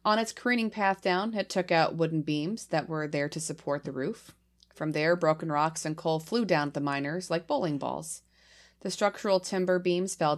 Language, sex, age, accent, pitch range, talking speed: English, female, 30-49, American, 155-185 Hz, 210 wpm